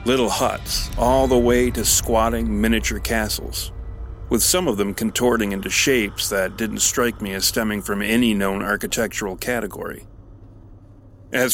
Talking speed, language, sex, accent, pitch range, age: 145 wpm, English, male, American, 100-120 Hz, 40-59